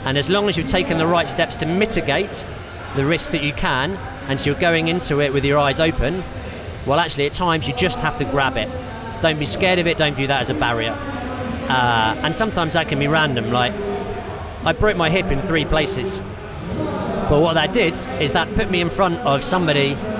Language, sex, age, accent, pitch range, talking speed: English, male, 40-59, British, 135-175 Hz, 220 wpm